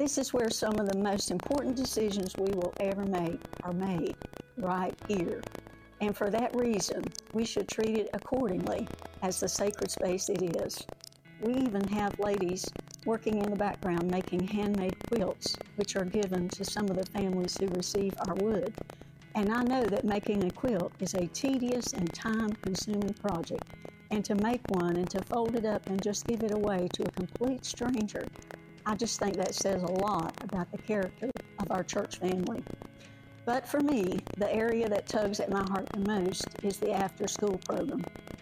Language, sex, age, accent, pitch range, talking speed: English, female, 60-79, American, 190-225 Hz, 180 wpm